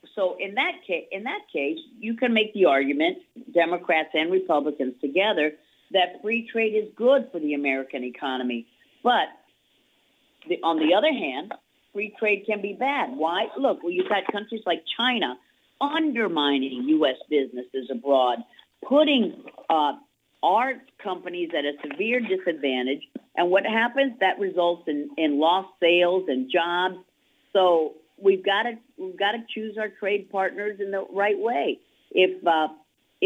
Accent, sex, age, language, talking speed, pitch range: American, female, 50-69, English, 145 wpm, 160-225 Hz